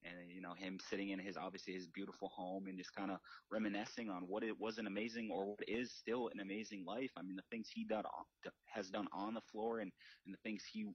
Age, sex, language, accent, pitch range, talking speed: 30-49, male, English, American, 95-105 Hz, 240 wpm